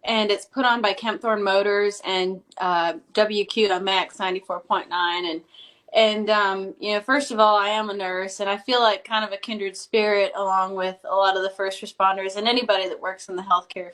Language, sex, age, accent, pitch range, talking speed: English, female, 10-29, American, 185-215 Hz, 205 wpm